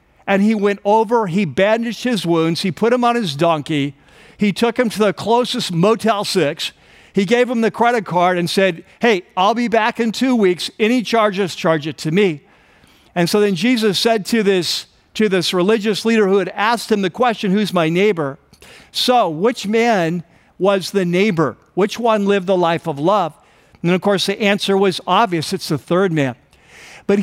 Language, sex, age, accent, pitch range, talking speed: English, male, 50-69, American, 175-225 Hz, 190 wpm